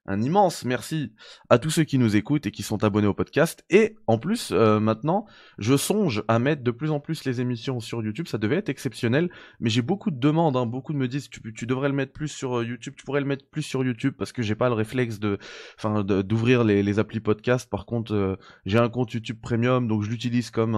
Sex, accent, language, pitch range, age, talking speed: male, French, French, 105-130 Hz, 20-39, 255 wpm